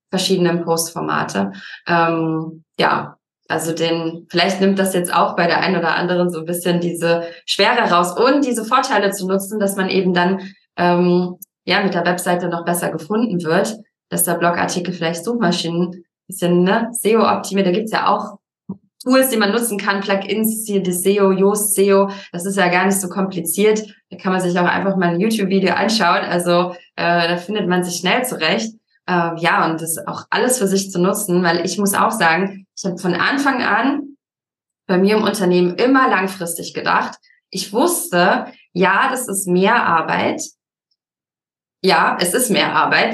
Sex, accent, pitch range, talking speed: female, German, 175-205 Hz, 175 wpm